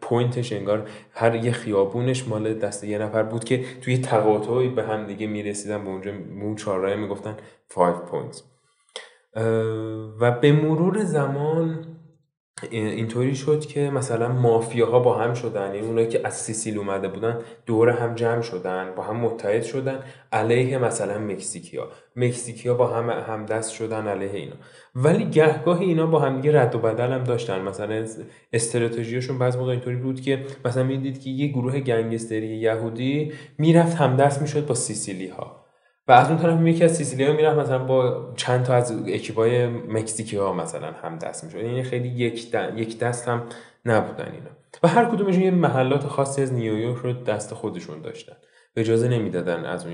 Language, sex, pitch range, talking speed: Persian, male, 110-140 Hz, 170 wpm